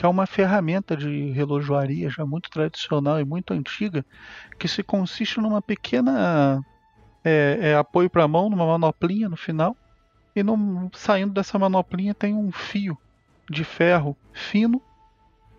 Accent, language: Brazilian, Portuguese